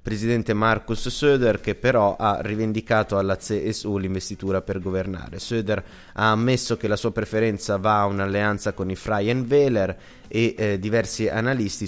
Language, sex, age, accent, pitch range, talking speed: Italian, male, 20-39, native, 95-115 Hz, 150 wpm